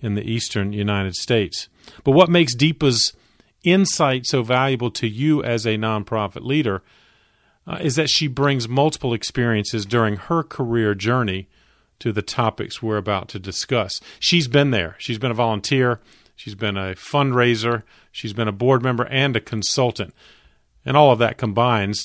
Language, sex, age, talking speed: English, male, 40-59, 165 wpm